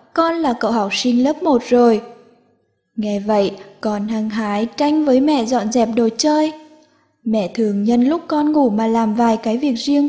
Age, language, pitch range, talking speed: 10-29, Vietnamese, 215-270 Hz, 190 wpm